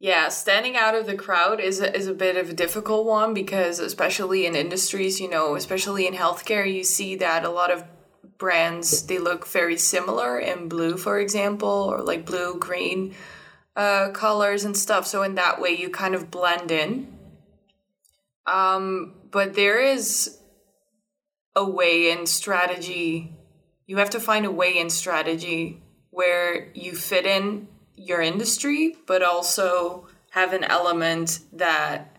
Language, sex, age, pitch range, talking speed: English, female, 20-39, 175-200 Hz, 155 wpm